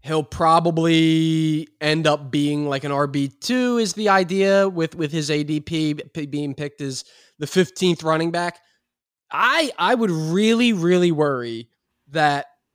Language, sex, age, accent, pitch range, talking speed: English, male, 20-39, American, 150-200 Hz, 135 wpm